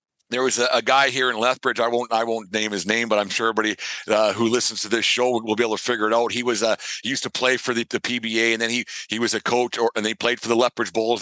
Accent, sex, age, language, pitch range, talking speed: American, male, 50-69, English, 110-130 Hz, 315 wpm